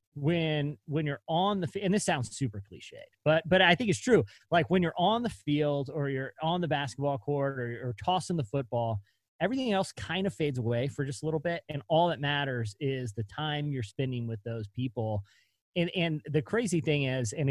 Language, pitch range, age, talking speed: English, 120-160 Hz, 30-49, 215 wpm